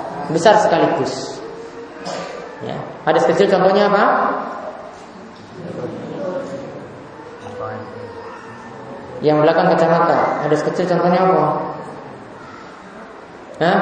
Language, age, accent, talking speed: Romanian, 20-39, Indonesian, 65 wpm